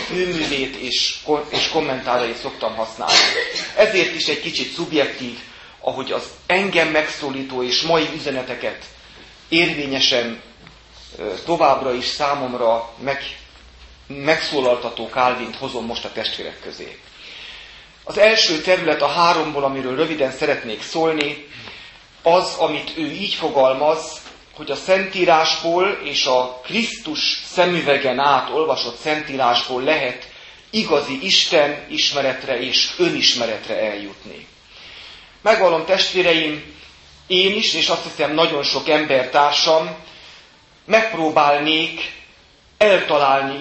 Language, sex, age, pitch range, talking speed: Hungarian, male, 30-49, 130-170 Hz, 100 wpm